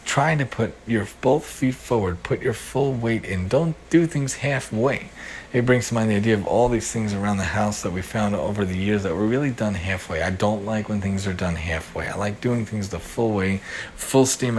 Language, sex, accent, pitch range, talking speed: English, male, American, 100-125 Hz, 235 wpm